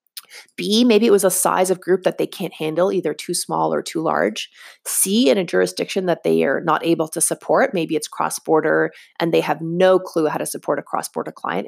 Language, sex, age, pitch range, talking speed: English, female, 30-49, 170-215 Hz, 220 wpm